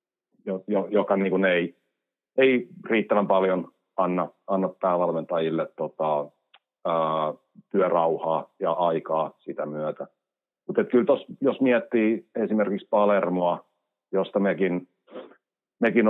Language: Finnish